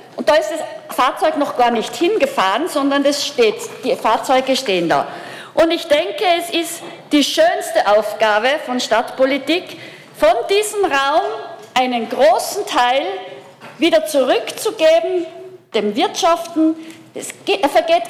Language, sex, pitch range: German, female, 255-330 Hz